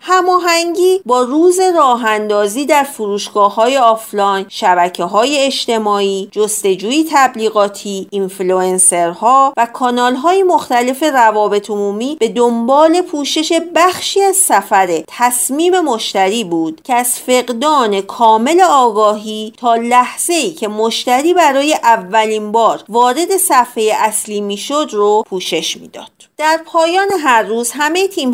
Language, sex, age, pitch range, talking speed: Persian, female, 40-59, 200-285 Hz, 115 wpm